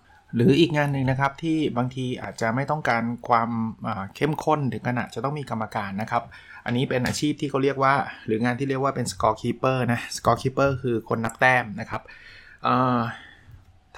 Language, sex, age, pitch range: Thai, male, 20-39, 110-135 Hz